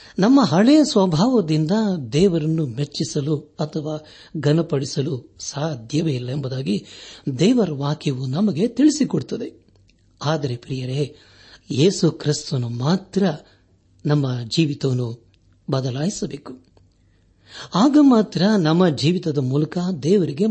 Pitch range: 125-190 Hz